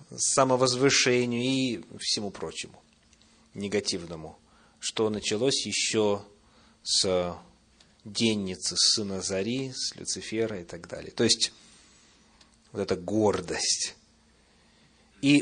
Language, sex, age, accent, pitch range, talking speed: Russian, male, 30-49, native, 100-140 Hz, 95 wpm